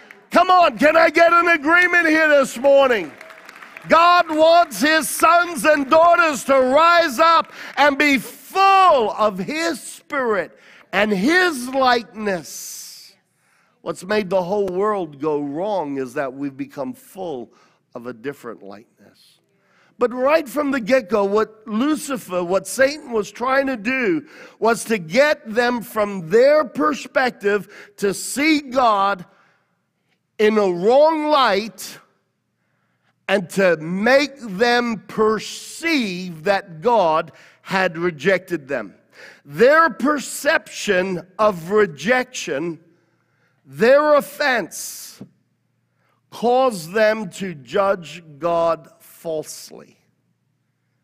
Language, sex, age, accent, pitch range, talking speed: English, male, 50-69, American, 180-280 Hz, 110 wpm